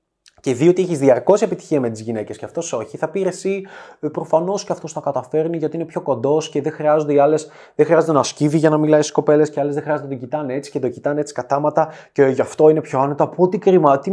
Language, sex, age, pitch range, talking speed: Greek, male, 20-39, 140-180 Hz, 240 wpm